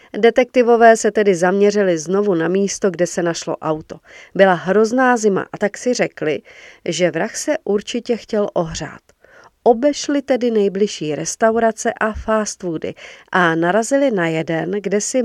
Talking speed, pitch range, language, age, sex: 145 wpm, 180-240 Hz, Czech, 40-59, female